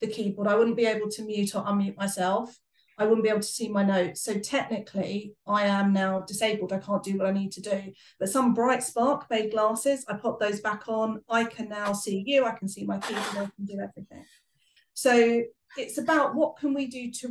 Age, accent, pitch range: 40-59, British, 200-245 Hz